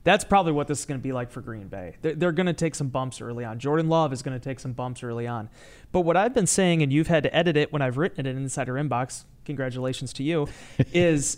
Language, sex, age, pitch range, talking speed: English, male, 30-49, 130-170 Hz, 275 wpm